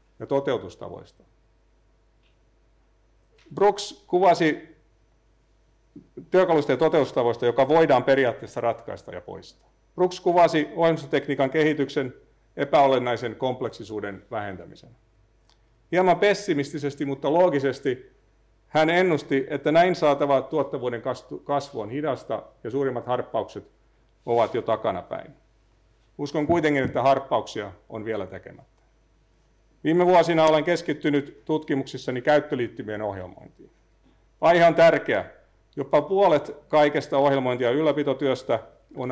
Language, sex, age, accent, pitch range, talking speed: Finnish, male, 50-69, native, 115-155 Hz, 95 wpm